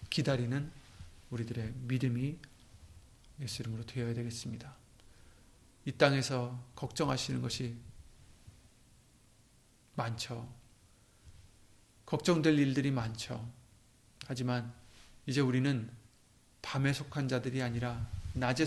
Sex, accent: male, native